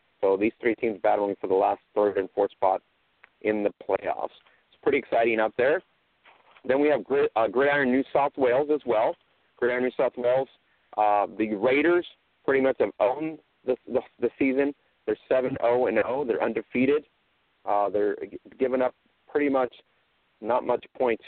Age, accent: 40-59, American